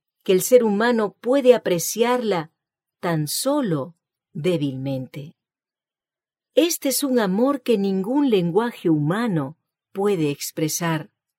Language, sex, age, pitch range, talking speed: English, female, 40-59, 160-235 Hz, 100 wpm